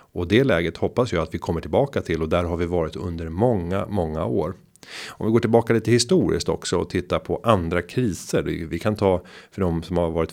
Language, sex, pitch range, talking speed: Swedish, male, 85-105 Hz, 225 wpm